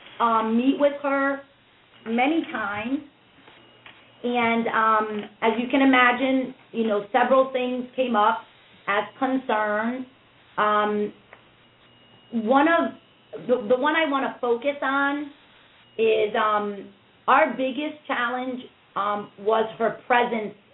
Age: 30-49